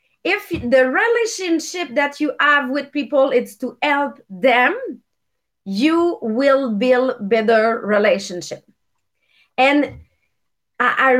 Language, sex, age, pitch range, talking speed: English, female, 30-49, 235-315 Hz, 100 wpm